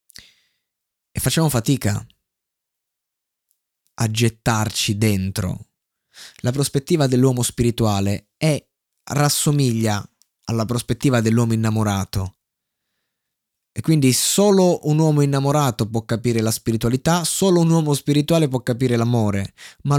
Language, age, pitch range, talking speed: Italian, 20-39, 110-135 Hz, 100 wpm